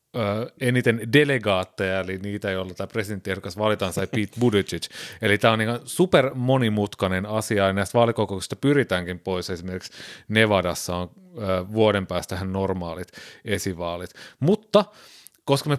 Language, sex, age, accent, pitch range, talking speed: Finnish, male, 30-49, native, 95-120 Hz, 130 wpm